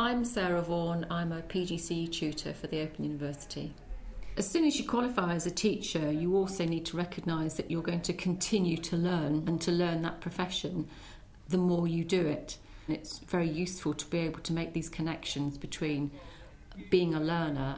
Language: English